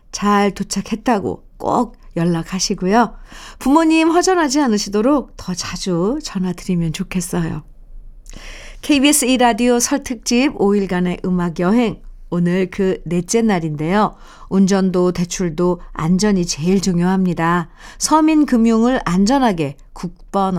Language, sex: Korean, female